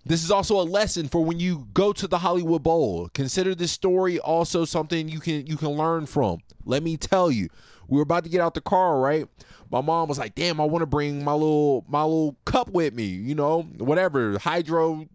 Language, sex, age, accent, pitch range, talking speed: English, male, 20-39, American, 145-215 Hz, 230 wpm